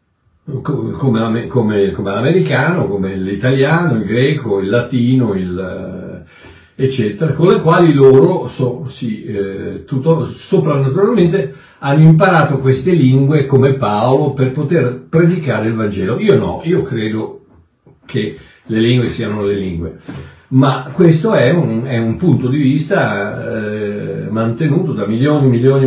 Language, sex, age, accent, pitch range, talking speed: Italian, male, 60-79, native, 120-145 Hz, 120 wpm